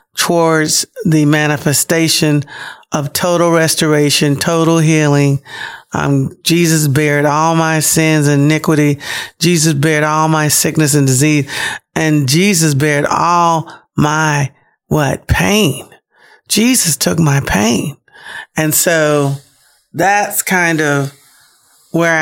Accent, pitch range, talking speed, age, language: American, 145-165 Hz, 110 wpm, 40-59, English